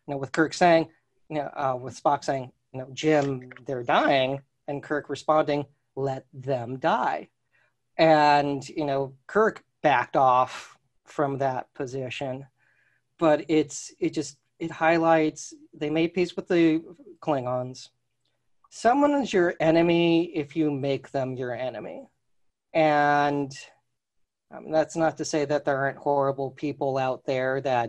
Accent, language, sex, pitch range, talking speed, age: American, English, male, 130-150 Hz, 145 wpm, 40-59